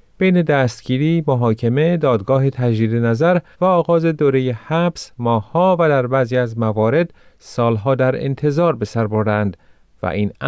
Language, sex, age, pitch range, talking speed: Persian, male, 30-49, 110-155 Hz, 130 wpm